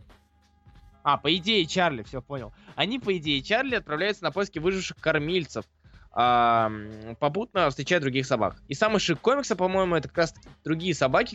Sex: male